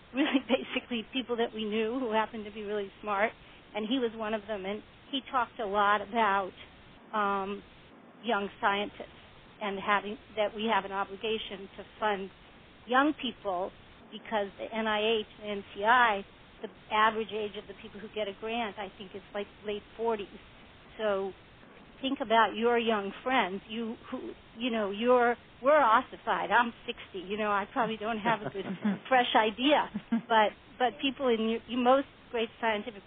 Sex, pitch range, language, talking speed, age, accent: female, 205-235 Hz, English, 170 wpm, 50-69, American